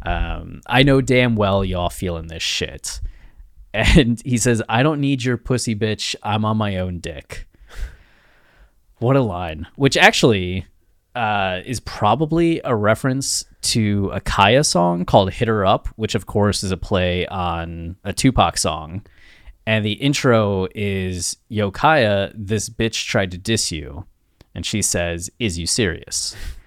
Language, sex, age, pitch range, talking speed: English, male, 20-39, 90-115 Hz, 155 wpm